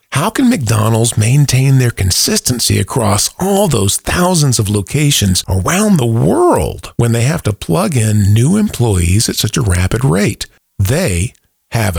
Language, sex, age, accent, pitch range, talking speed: English, male, 50-69, American, 100-135 Hz, 150 wpm